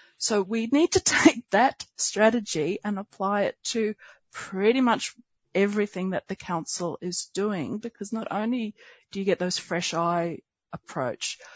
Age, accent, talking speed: 40-59, Australian, 150 wpm